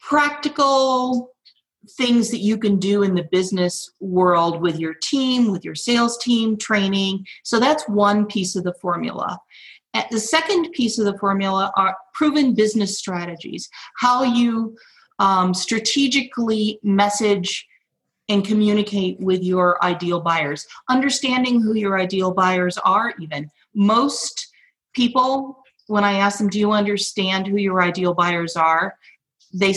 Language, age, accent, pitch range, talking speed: English, 40-59, American, 175-220 Hz, 135 wpm